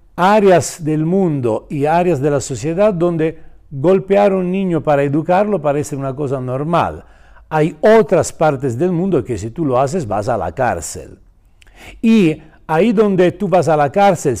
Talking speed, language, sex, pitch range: 170 wpm, Spanish, male, 120-190 Hz